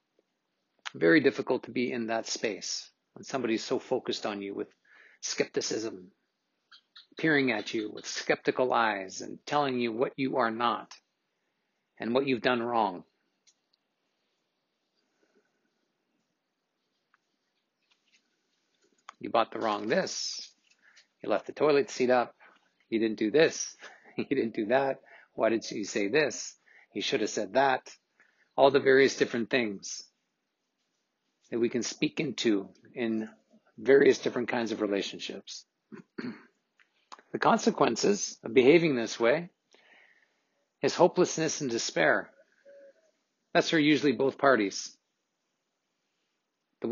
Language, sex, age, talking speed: English, male, 50-69, 120 wpm